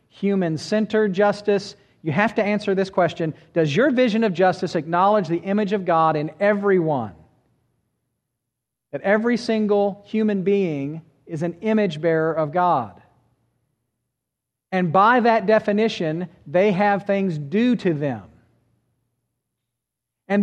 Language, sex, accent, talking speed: English, male, American, 120 wpm